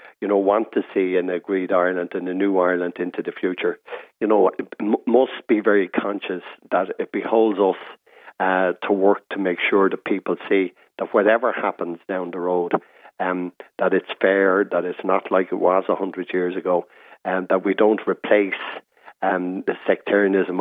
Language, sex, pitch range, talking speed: English, male, 90-100 Hz, 180 wpm